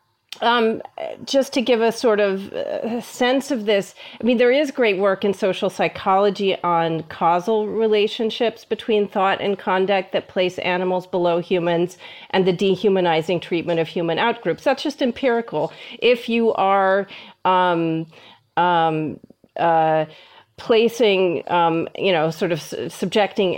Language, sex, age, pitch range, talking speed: English, female, 40-59, 180-225 Hz, 140 wpm